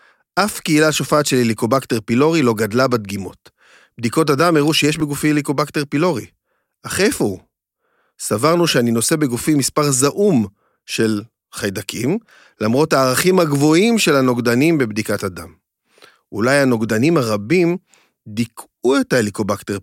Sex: male